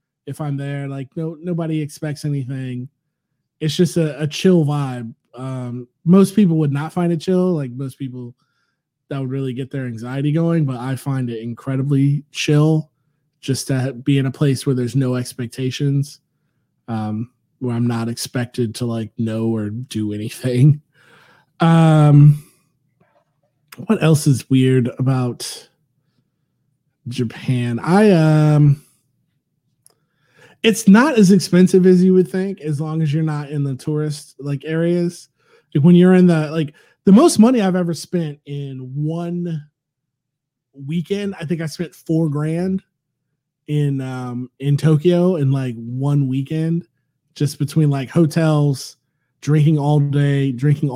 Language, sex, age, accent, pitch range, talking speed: English, male, 20-39, American, 135-165 Hz, 145 wpm